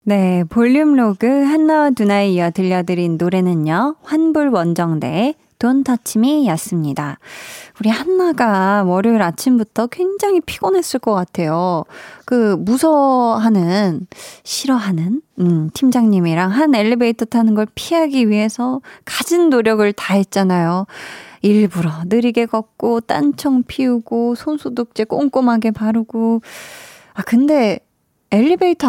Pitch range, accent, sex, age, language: 190-275 Hz, native, female, 20-39, Korean